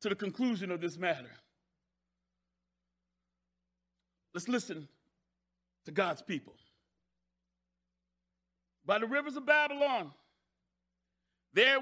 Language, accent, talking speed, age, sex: English, American, 85 wpm, 40-59, male